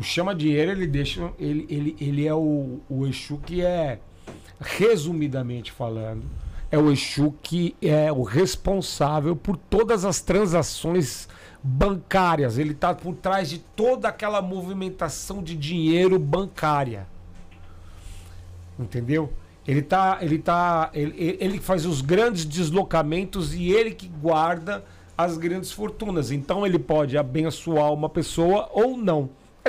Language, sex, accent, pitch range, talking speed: Portuguese, male, Brazilian, 145-190 Hz, 135 wpm